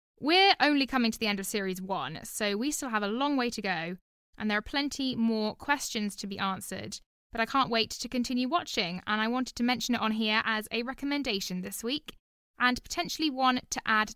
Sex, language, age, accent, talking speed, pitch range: female, English, 10-29, British, 220 wpm, 205-265 Hz